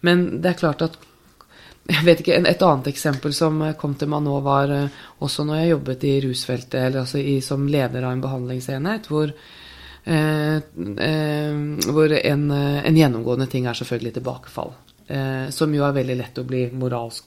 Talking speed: 190 wpm